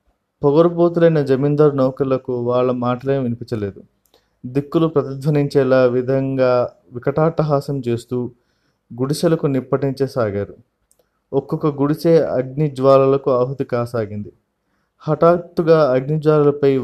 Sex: male